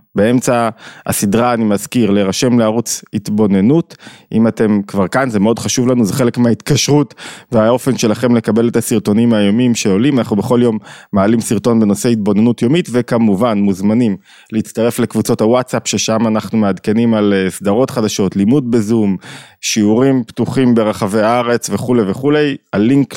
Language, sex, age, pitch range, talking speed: Hebrew, male, 20-39, 100-120 Hz, 135 wpm